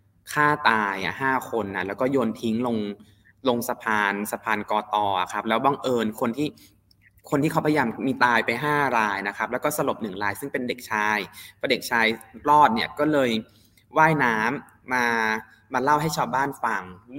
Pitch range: 110-145 Hz